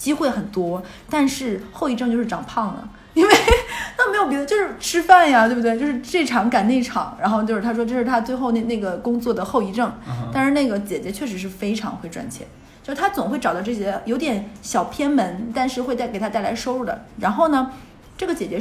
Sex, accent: female, native